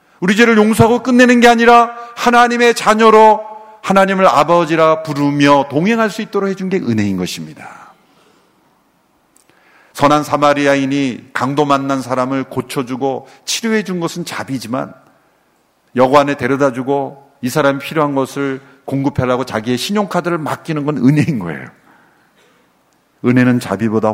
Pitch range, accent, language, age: 125-205 Hz, native, Korean, 50-69